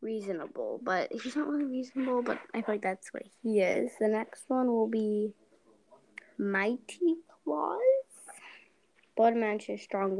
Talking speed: 140 wpm